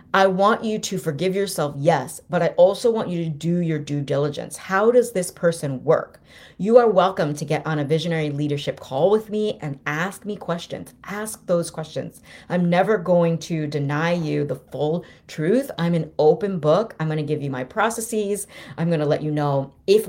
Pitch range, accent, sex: 150-195 Hz, American, female